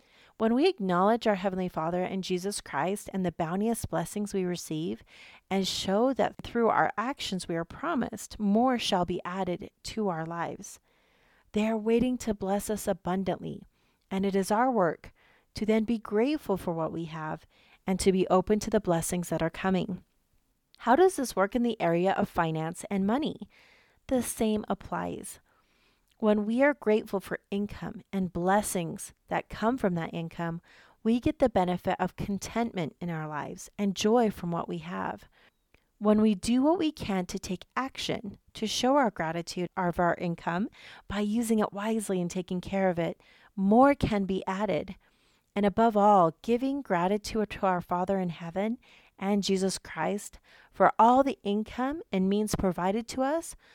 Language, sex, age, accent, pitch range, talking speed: English, female, 30-49, American, 180-225 Hz, 170 wpm